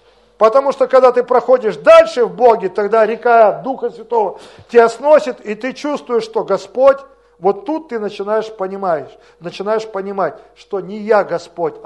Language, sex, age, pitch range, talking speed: Russian, male, 50-69, 205-265 Hz, 150 wpm